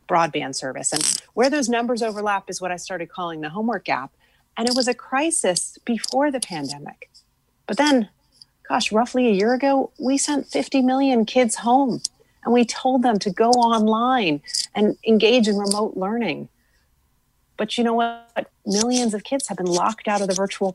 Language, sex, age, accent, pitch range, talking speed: English, female, 40-59, American, 155-230 Hz, 180 wpm